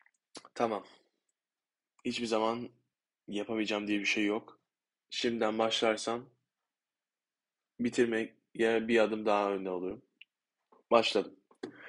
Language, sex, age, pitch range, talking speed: Turkish, male, 20-39, 100-120 Hz, 85 wpm